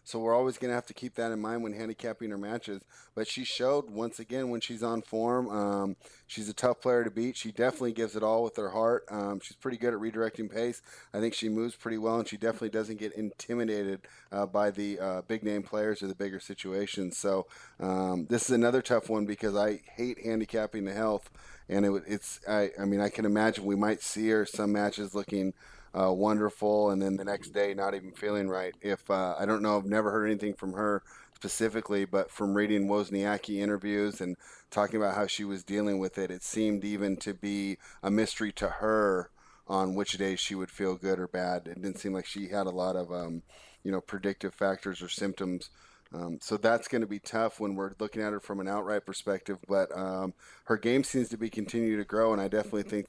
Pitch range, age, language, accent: 95-110 Hz, 30-49, English, American